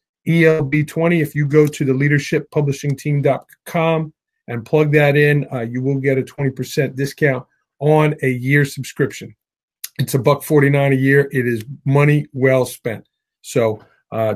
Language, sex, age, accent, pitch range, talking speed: English, male, 40-59, American, 125-150 Hz, 150 wpm